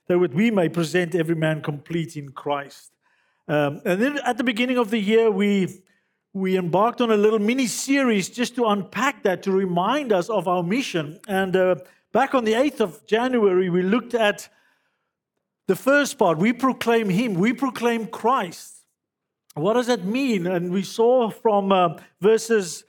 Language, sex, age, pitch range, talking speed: English, male, 50-69, 175-225 Hz, 170 wpm